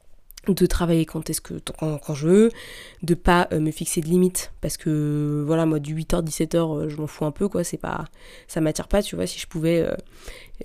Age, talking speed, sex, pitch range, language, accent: 20-39, 215 wpm, female, 160-195 Hz, French, French